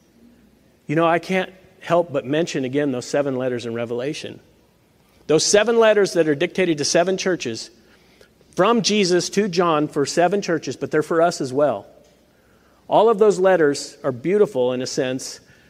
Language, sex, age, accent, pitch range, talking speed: English, male, 50-69, American, 140-185 Hz, 170 wpm